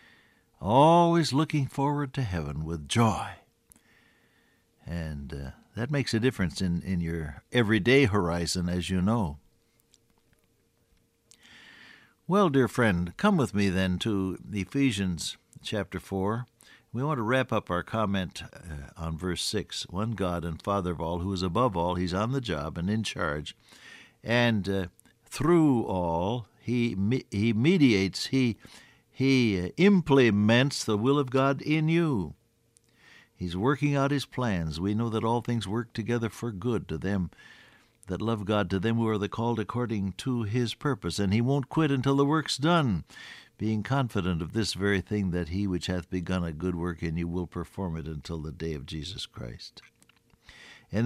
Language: English